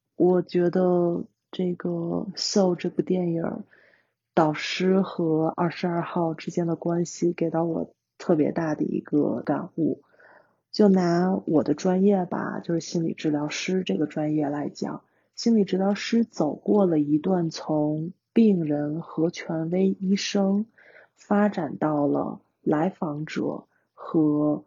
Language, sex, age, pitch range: Chinese, female, 30-49, 155-195 Hz